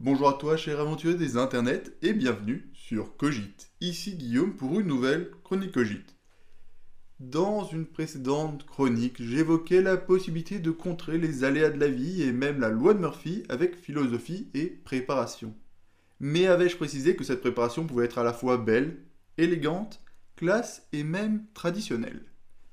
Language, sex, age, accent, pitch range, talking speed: French, male, 20-39, French, 120-175 Hz, 155 wpm